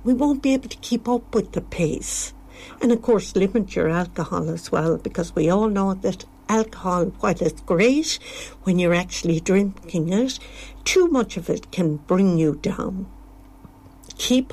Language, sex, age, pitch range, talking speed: English, female, 60-79, 170-260 Hz, 170 wpm